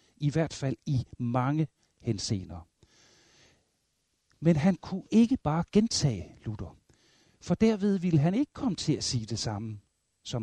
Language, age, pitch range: Danish, 60-79, 115-165 Hz